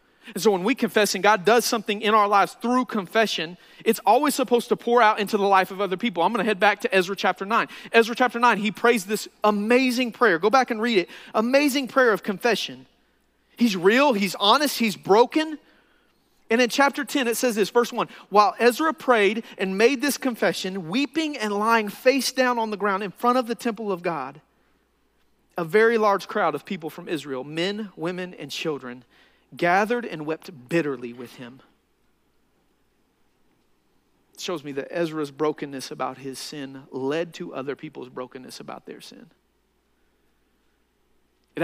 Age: 40-59